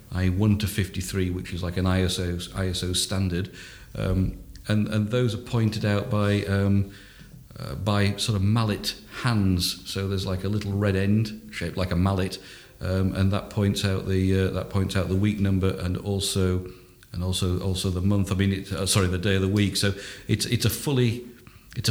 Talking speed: 195 wpm